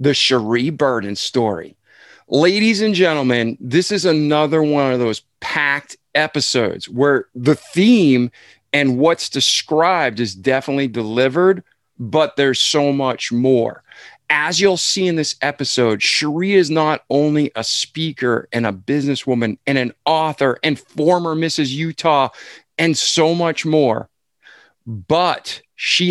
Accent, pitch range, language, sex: American, 125-155 Hz, English, male